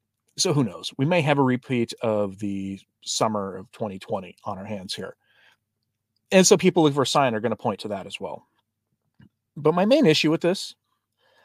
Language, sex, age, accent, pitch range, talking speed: English, male, 40-59, American, 110-165 Hz, 195 wpm